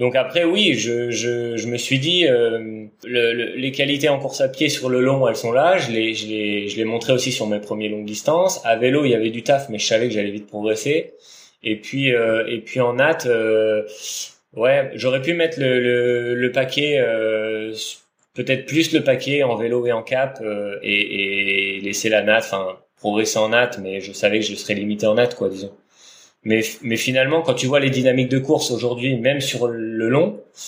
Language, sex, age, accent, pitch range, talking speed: French, male, 20-39, French, 110-135 Hz, 215 wpm